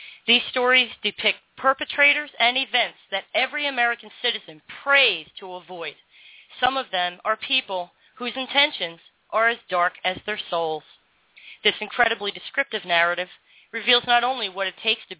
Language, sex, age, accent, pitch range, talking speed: English, female, 40-59, American, 190-245 Hz, 145 wpm